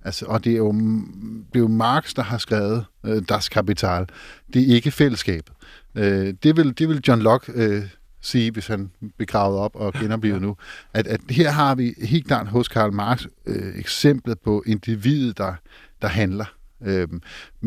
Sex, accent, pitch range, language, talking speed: male, native, 105-130 Hz, Danish, 180 wpm